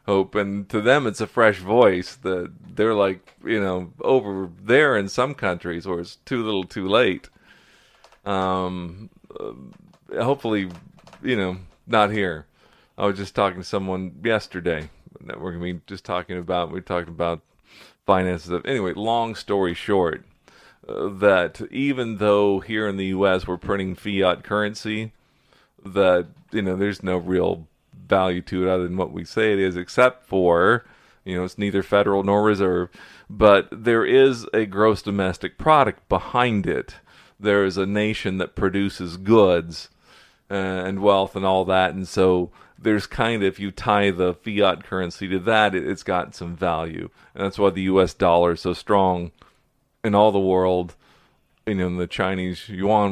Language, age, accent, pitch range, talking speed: English, 40-59, American, 90-105 Hz, 165 wpm